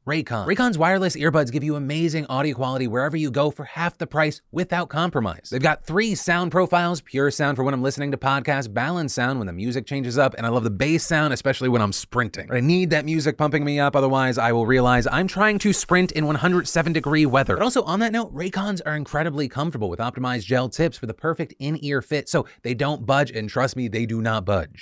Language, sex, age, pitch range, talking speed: English, male, 30-49, 125-160 Hz, 230 wpm